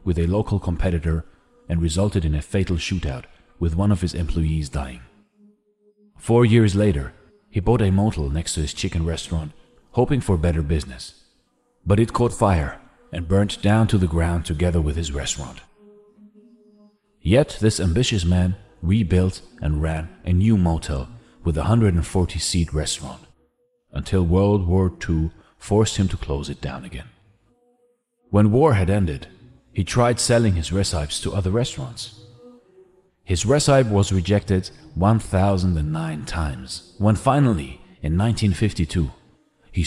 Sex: male